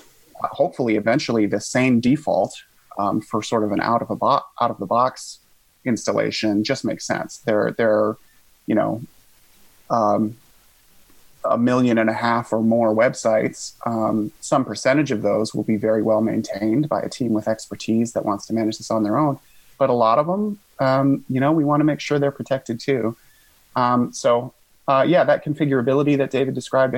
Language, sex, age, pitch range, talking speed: English, male, 30-49, 110-135 Hz, 170 wpm